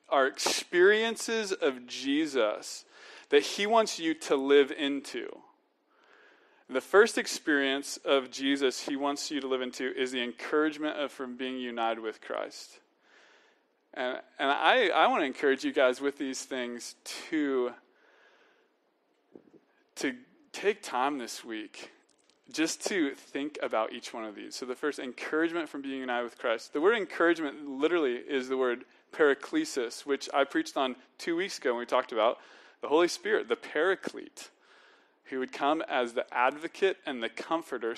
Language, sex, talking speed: English, male, 160 wpm